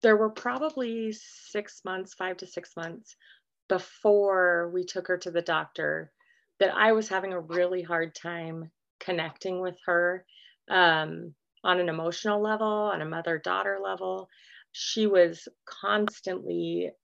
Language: English